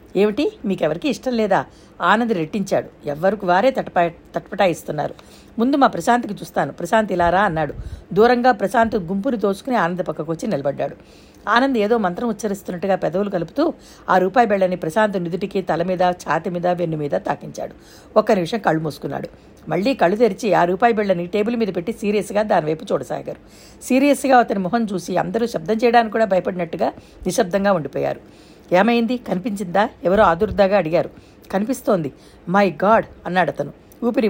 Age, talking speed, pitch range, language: 60-79, 140 wpm, 180-230 Hz, Telugu